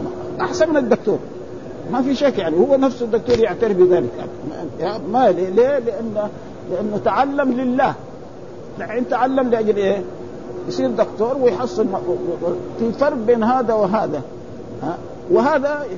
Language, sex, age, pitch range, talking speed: Arabic, male, 50-69, 200-270 Hz, 120 wpm